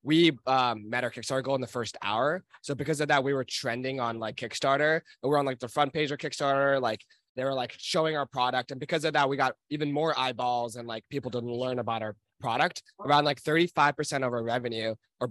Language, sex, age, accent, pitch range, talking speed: English, male, 20-39, American, 120-145 Hz, 230 wpm